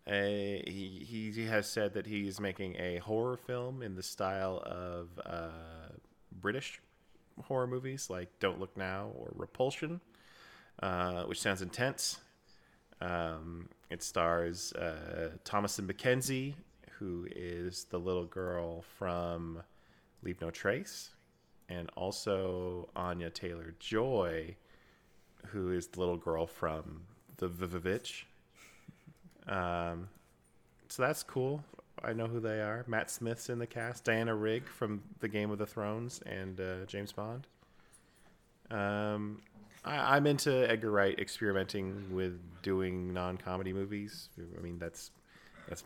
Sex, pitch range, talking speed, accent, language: male, 90-105 Hz, 130 wpm, American, English